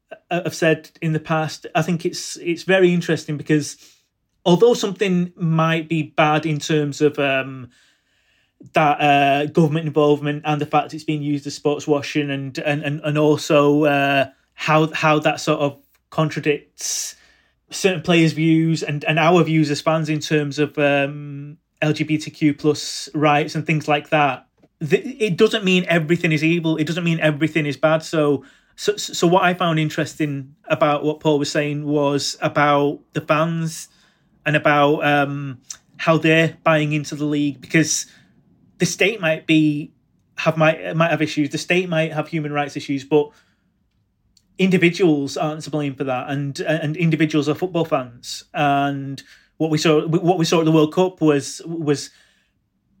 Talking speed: 170 wpm